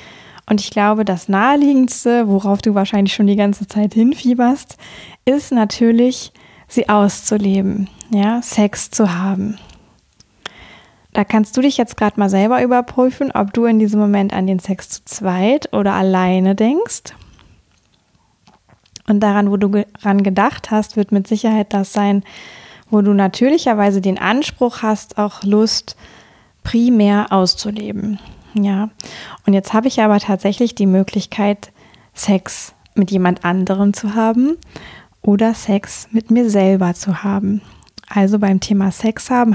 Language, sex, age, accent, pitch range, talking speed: German, female, 20-39, German, 195-225 Hz, 140 wpm